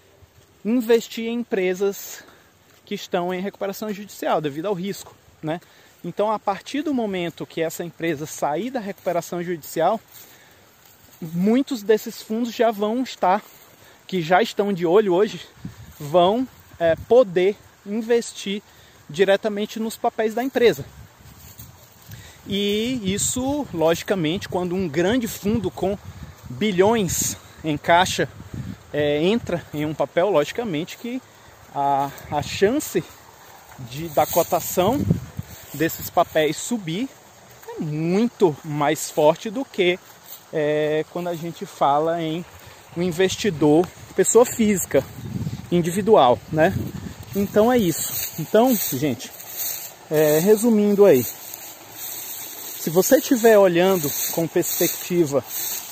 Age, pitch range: 30-49, 150-210 Hz